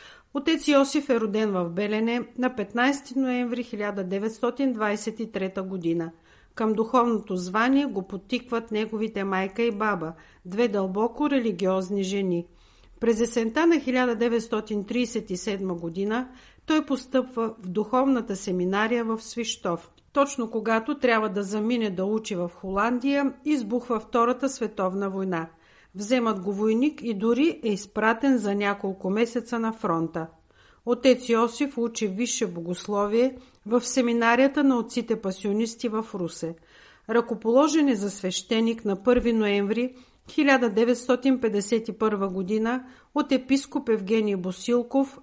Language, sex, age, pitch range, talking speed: Bulgarian, female, 50-69, 200-250 Hz, 115 wpm